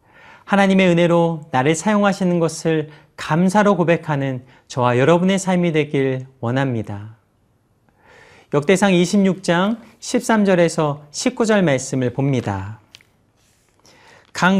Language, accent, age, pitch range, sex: Korean, native, 40-59, 140-195 Hz, male